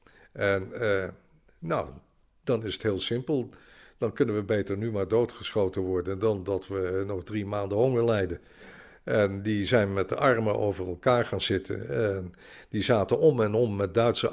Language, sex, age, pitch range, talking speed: Dutch, male, 50-69, 95-120 Hz, 175 wpm